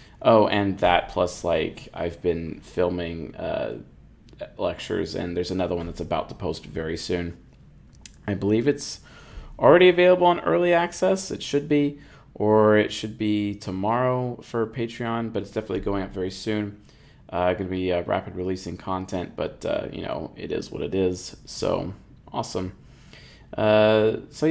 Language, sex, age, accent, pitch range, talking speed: English, male, 20-39, American, 90-120 Hz, 160 wpm